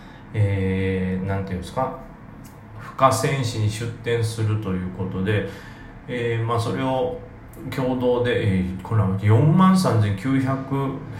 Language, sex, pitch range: Japanese, male, 100-130 Hz